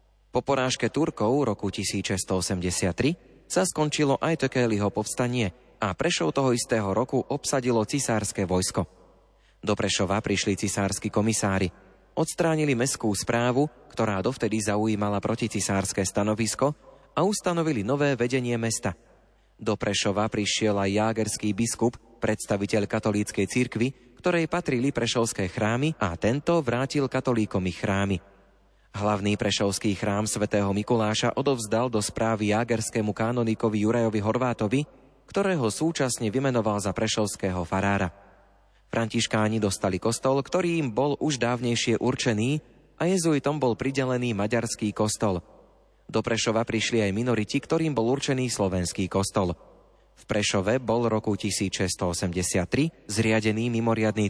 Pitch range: 105-130 Hz